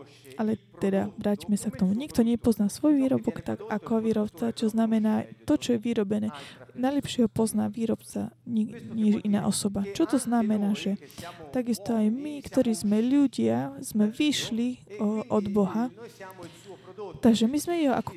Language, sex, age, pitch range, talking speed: Slovak, female, 20-39, 205-235 Hz, 150 wpm